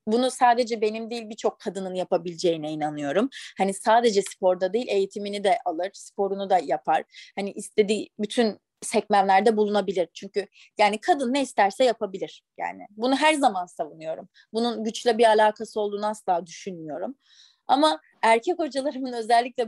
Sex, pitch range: female, 195-250 Hz